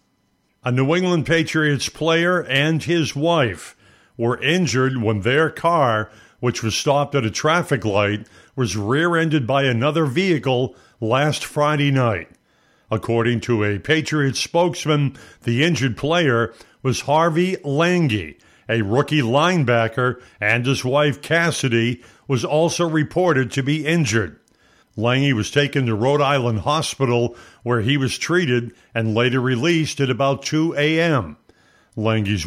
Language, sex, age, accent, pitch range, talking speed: English, male, 50-69, American, 115-155 Hz, 130 wpm